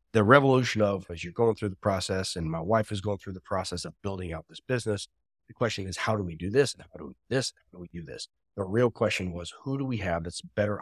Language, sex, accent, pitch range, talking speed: English, male, American, 95-115 Hz, 285 wpm